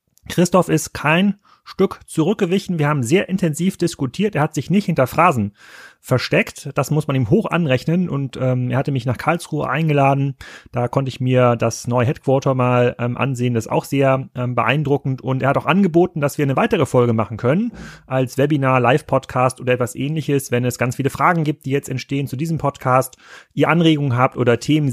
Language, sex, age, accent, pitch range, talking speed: German, male, 30-49, German, 130-170 Hz, 195 wpm